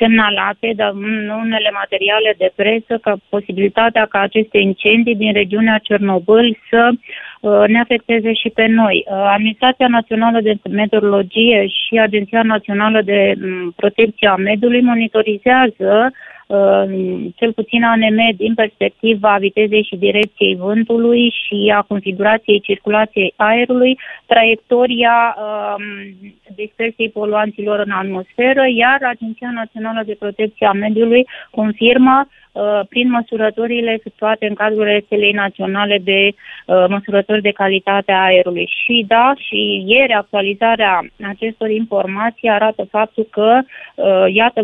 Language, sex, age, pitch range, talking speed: Romanian, female, 20-39, 200-225 Hz, 115 wpm